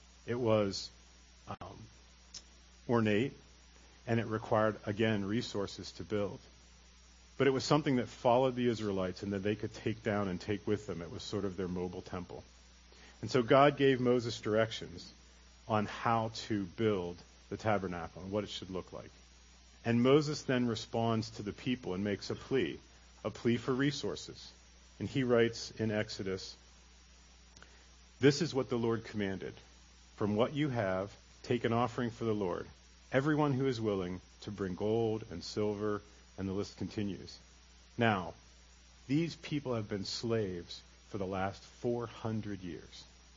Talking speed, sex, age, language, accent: 160 wpm, male, 40-59, English, American